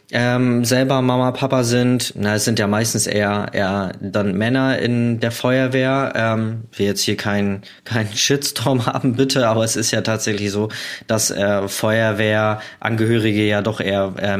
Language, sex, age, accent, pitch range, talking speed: German, male, 20-39, German, 110-130 Hz, 165 wpm